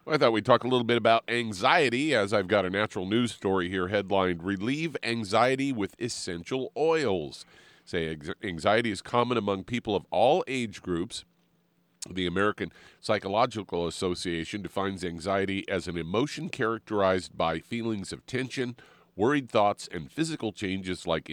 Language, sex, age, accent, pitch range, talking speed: English, male, 40-59, American, 90-115 Hz, 155 wpm